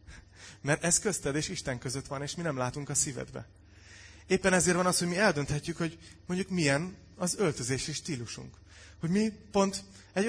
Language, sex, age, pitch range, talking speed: Hungarian, male, 30-49, 115-160 Hz, 175 wpm